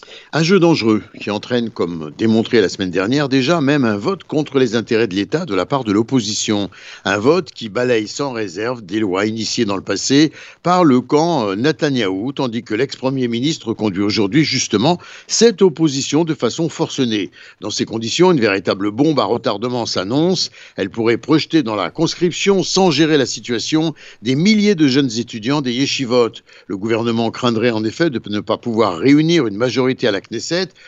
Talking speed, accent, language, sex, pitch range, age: 185 wpm, French, Italian, male, 115-165 Hz, 60-79